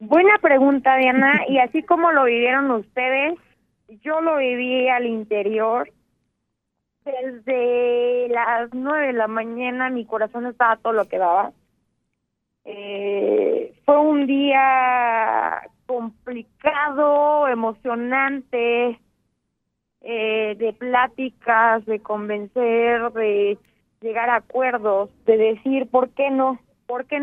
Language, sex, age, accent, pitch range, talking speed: Spanish, female, 20-39, Mexican, 225-275 Hz, 110 wpm